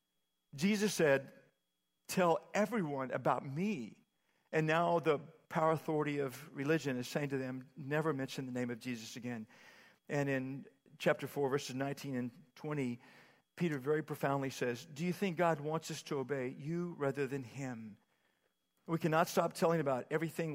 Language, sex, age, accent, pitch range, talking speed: English, male, 50-69, American, 135-165 Hz, 160 wpm